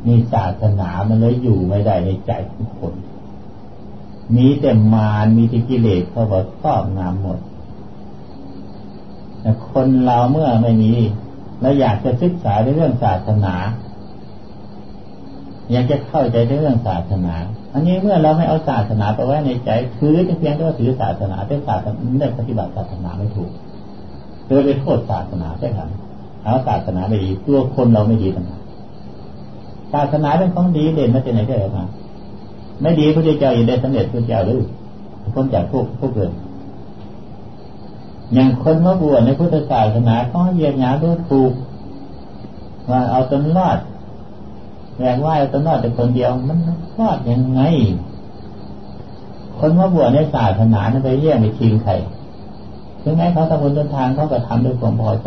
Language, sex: Thai, male